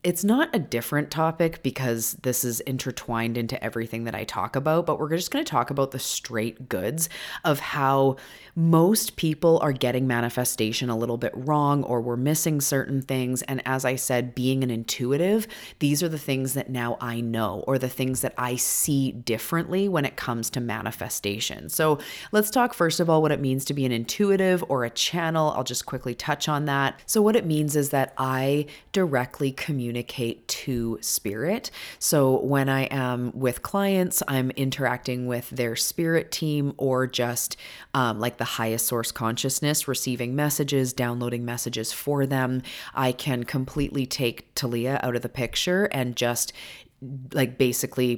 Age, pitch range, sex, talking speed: 30-49, 120-150 Hz, female, 175 wpm